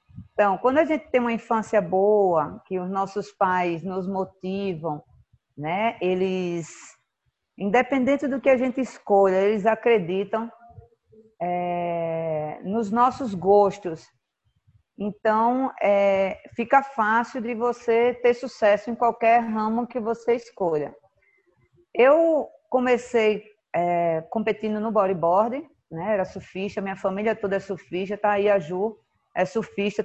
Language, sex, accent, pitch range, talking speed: Portuguese, female, Brazilian, 185-230 Hz, 125 wpm